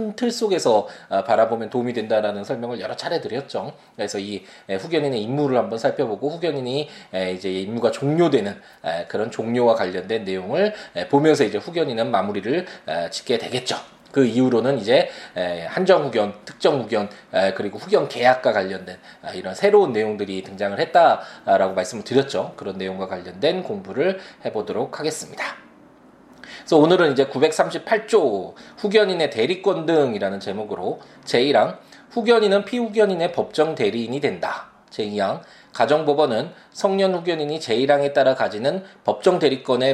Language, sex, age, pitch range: Korean, male, 20-39, 110-180 Hz